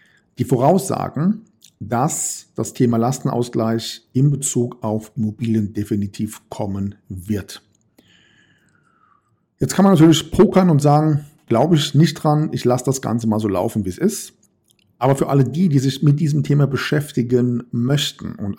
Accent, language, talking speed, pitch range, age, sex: German, German, 150 wpm, 110-145 Hz, 50-69, male